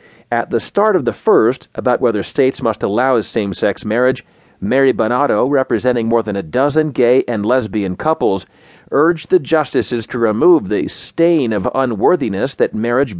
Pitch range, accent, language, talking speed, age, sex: 115-155 Hz, American, English, 160 wpm, 40-59, male